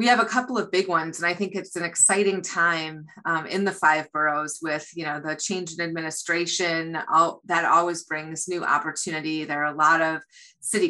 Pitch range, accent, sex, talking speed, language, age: 155-190 Hz, American, female, 205 wpm, English, 30-49